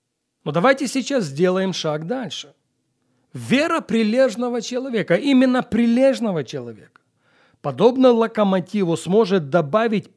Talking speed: 95 wpm